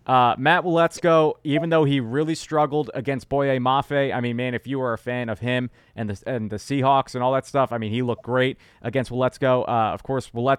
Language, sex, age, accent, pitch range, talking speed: English, male, 20-39, American, 115-140 Hz, 225 wpm